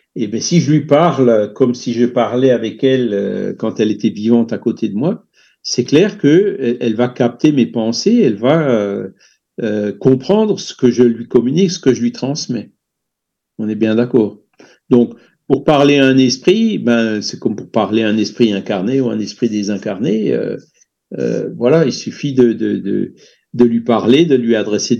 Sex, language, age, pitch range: male, French, 50-69, 110-150 Hz